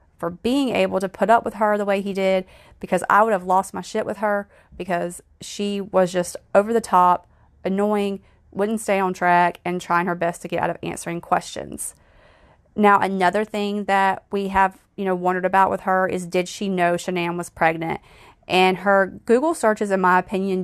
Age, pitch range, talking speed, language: 30-49, 175-205 Hz, 200 wpm, English